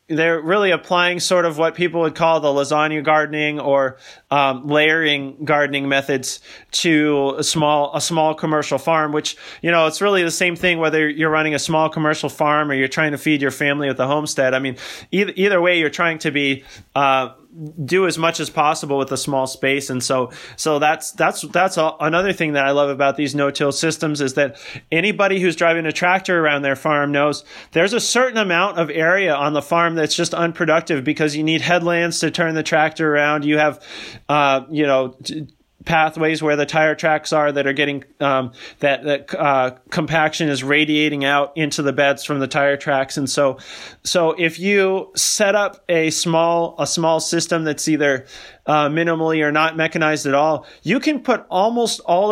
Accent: American